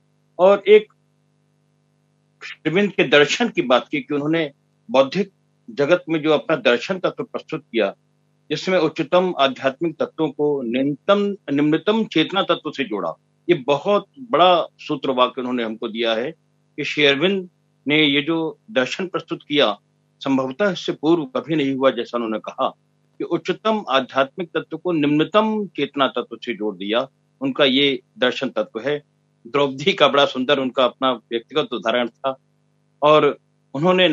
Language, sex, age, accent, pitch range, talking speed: Hindi, male, 50-69, native, 130-170 Hz, 145 wpm